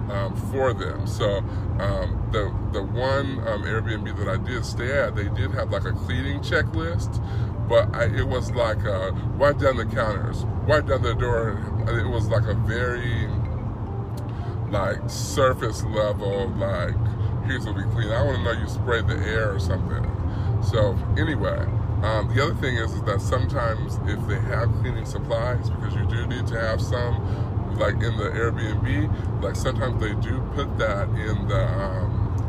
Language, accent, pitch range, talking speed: English, American, 105-115 Hz, 175 wpm